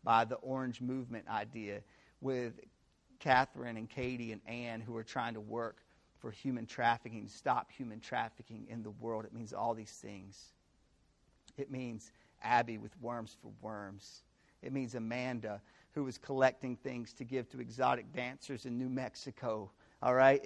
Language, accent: English, American